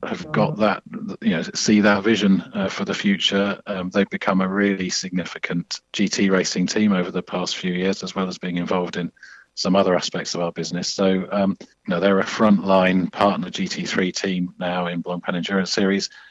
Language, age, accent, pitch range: English, 40-59, British, 90-100 Hz